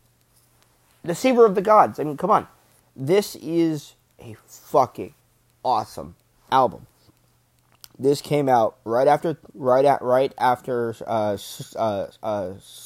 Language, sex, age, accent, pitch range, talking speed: English, male, 30-49, American, 120-140 Hz, 115 wpm